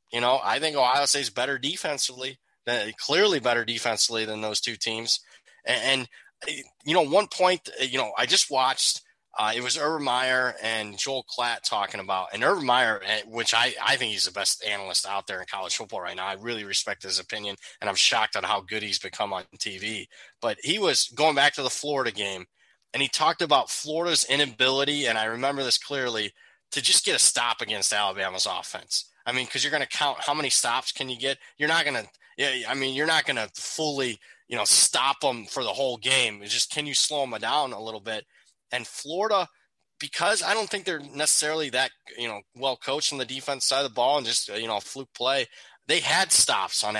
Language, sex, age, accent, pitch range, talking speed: English, male, 20-39, American, 110-140 Hz, 220 wpm